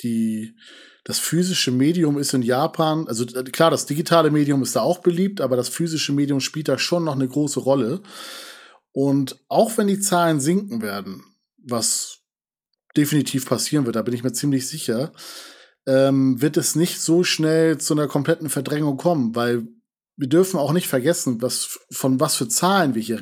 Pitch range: 135-170 Hz